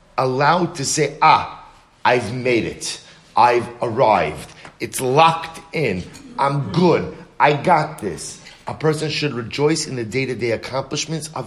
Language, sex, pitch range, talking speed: English, male, 130-160 Hz, 135 wpm